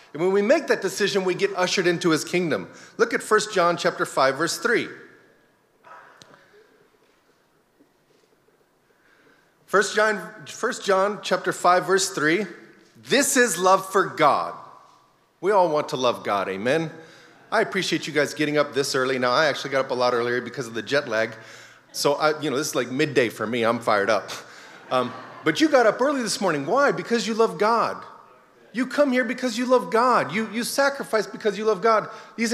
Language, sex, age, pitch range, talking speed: English, male, 40-59, 140-225 Hz, 190 wpm